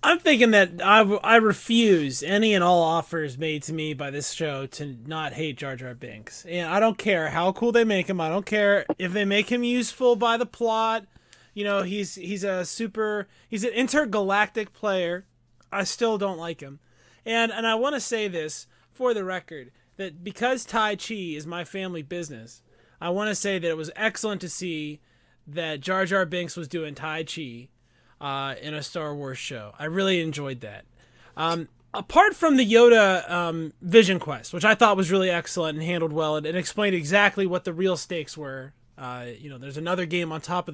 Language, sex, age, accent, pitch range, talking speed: English, male, 20-39, American, 150-205 Hz, 205 wpm